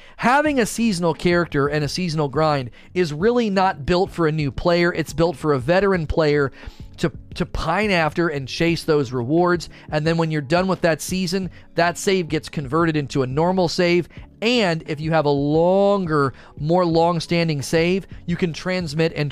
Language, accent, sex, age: English, American, male, 40-59